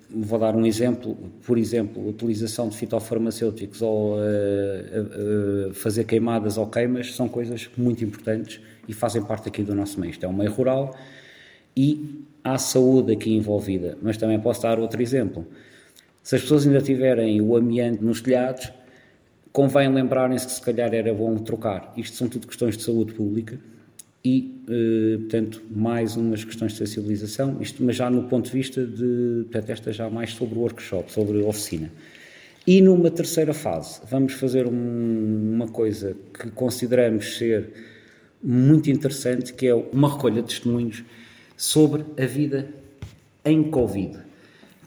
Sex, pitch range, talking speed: male, 110-125 Hz, 155 wpm